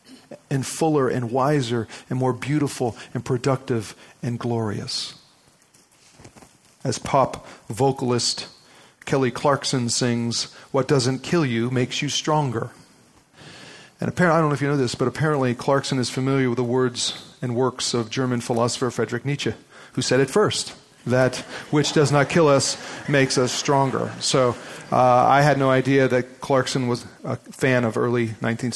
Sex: male